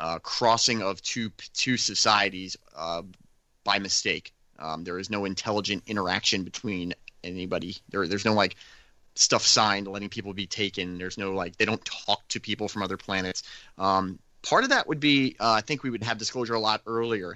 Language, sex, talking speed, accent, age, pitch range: English, male, 185 wpm, American, 30-49, 95-110 Hz